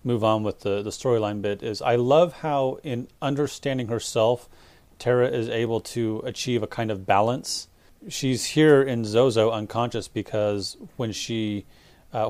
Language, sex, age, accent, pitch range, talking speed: English, male, 30-49, American, 105-125 Hz, 155 wpm